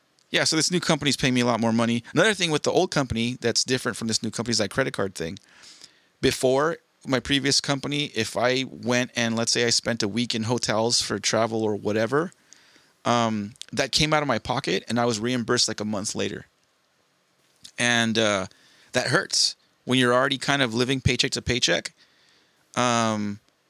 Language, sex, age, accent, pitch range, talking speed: English, male, 30-49, American, 110-130 Hz, 200 wpm